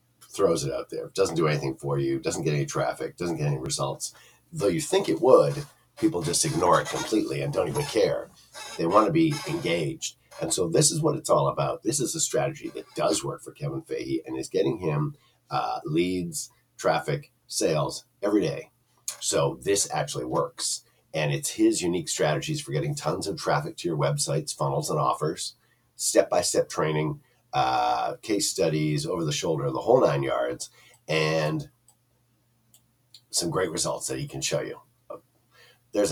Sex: male